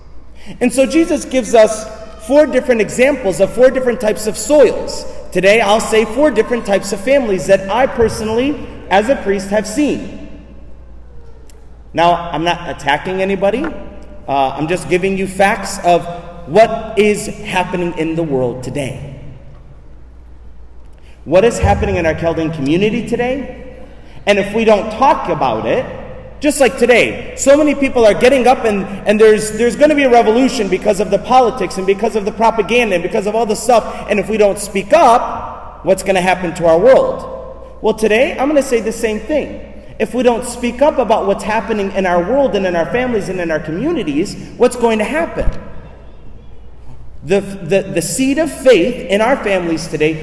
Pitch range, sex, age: 175-245 Hz, male, 30-49